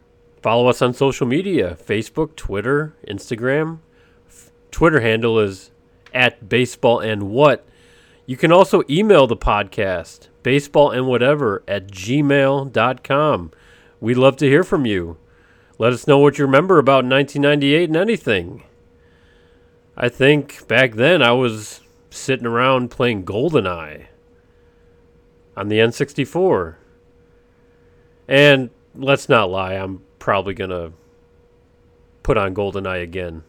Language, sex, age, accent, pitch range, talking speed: English, male, 40-59, American, 95-140 Hz, 115 wpm